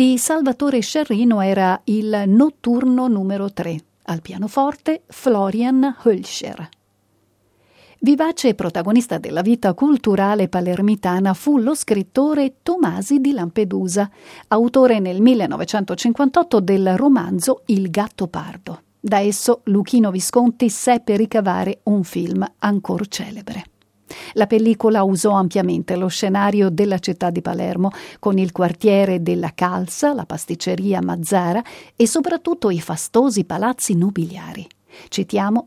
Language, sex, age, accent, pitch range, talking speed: Italian, female, 40-59, native, 190-245 Hz, 115 wpm